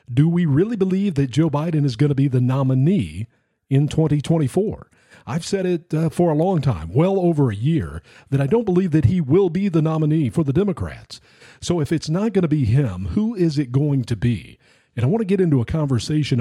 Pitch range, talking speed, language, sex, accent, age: 125-160 Hz, 225 wpm, English, male, American, 50-69